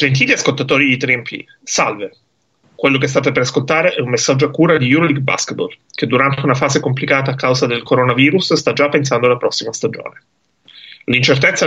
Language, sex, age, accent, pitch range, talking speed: Italian, male, 30-49, native, 130-155 Hz, 175 wpm